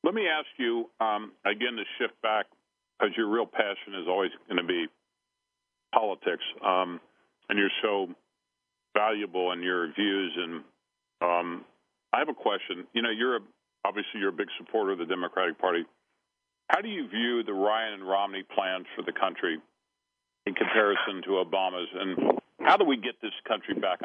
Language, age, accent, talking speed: English, 50-69, American, 175 wpm